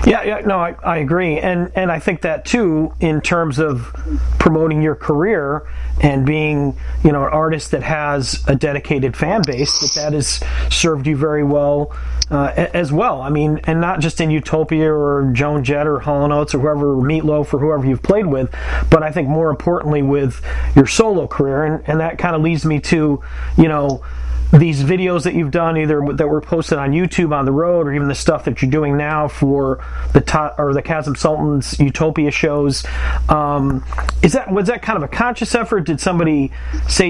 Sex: male